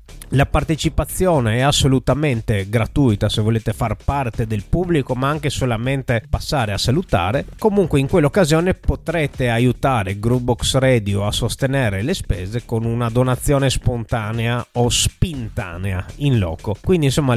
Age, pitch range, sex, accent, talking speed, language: 30-49, 110-145 Hz, male, native, 130 wpm, Italian